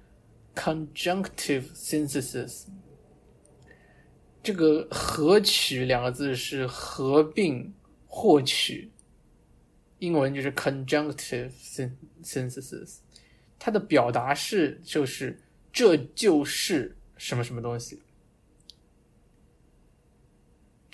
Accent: native